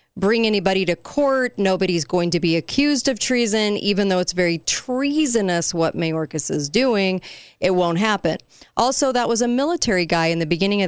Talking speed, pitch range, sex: 180 wpm, 170-210 Hz, female